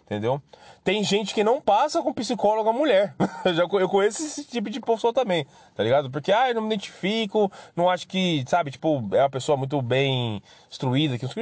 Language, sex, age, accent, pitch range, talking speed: Portuguese, male, 20-39, Brazilian, 150-235 Hz, 195 wpm